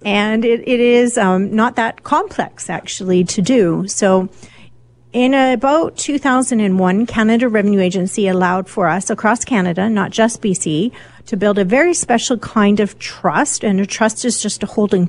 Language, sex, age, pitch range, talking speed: English, female, 40-59, 180-235 Hz, 165 wpm